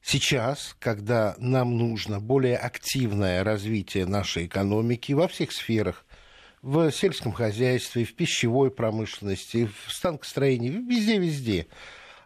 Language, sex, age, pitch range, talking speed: Russian, male, 60-79, 120-160 Hz, 105 wpm